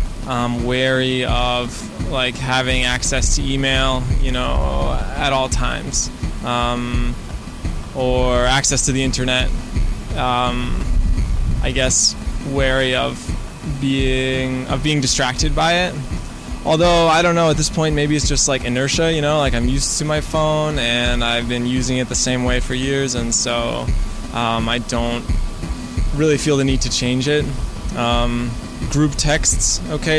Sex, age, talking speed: male, 20-39, 155 wpm